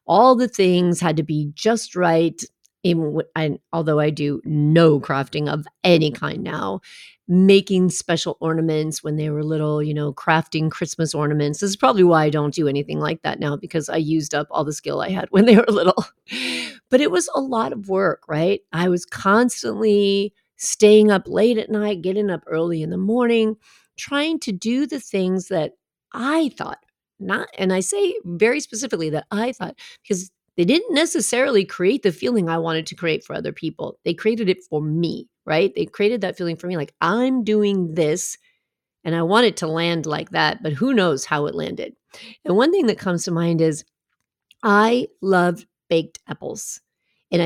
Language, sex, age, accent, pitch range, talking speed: English, female, 40-59, American, 160-215 Hz, 190 wpm